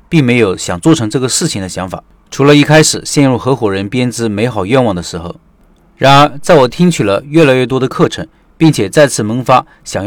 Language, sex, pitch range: Chinese, male, 120-160 Hz